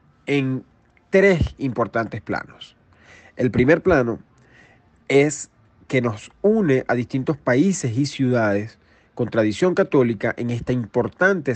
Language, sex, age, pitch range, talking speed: Spanish, male, 40-59, 110-145 Hz, 115 wpm